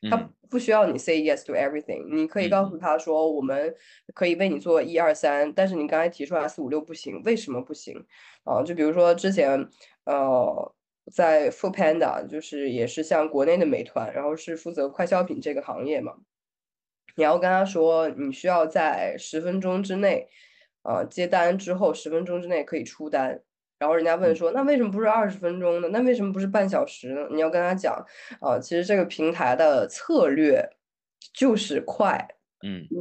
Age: 20-39